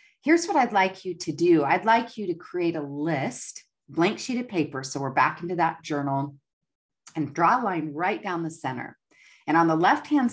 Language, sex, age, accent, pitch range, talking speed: English, female, 40-59, American, 150-210 Hz, 210 wpm